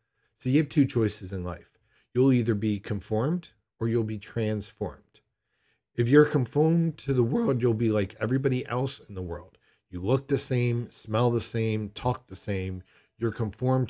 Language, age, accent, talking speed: English, 40-59, American, 175 wpm